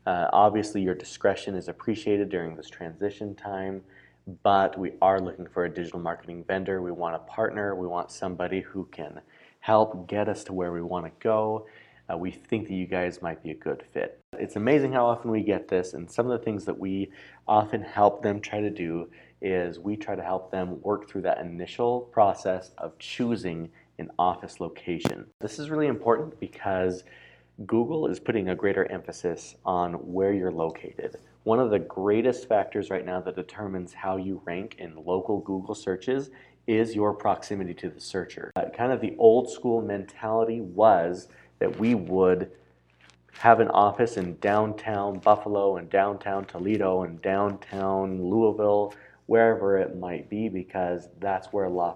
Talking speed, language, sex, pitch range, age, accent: 175 wpm, English, male, 90-105 Hz, 30-49, American